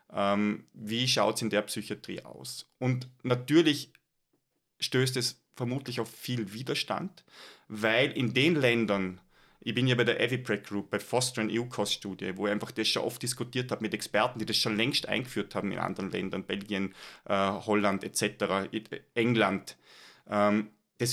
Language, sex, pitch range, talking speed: German, male, 105-125 Hz, 155 wpm